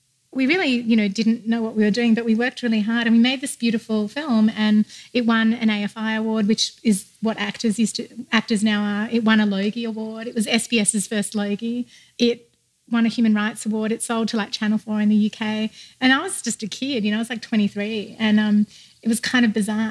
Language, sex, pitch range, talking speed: English, female, 210-235 Hz, 240 wpm